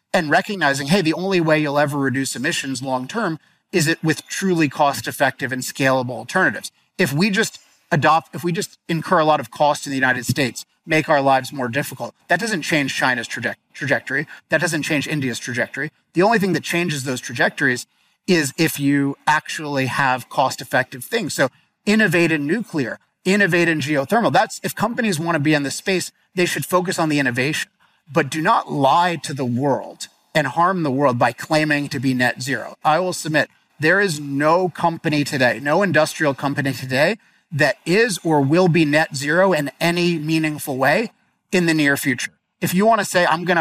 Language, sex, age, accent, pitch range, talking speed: English, male, 30-49, American, 140-175 Hz, 195 wpm